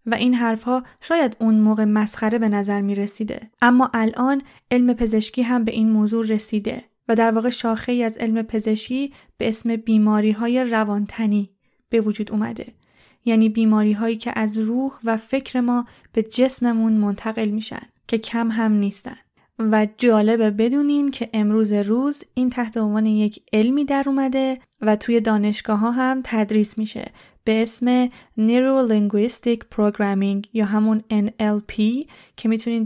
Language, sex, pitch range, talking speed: Persian, female, 215-245 Hz, 150 wpm